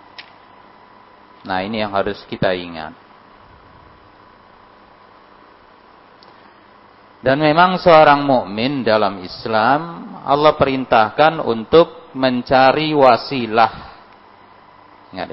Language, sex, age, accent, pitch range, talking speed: Indonesian, male, 40-59, native, 100-140 Hz, 70 wpm